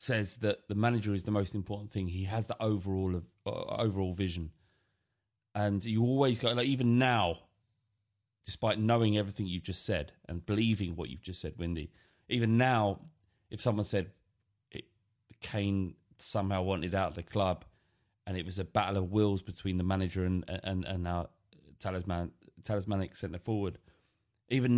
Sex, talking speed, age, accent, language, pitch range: male, 165 wpm, 30-49, British, English, 95-110 Hz